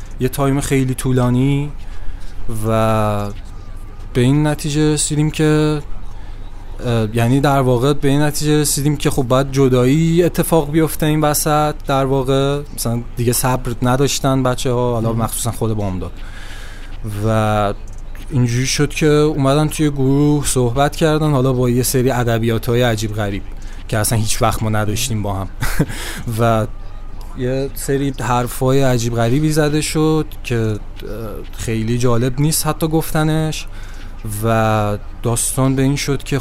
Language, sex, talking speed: Persian, male, 135 wpm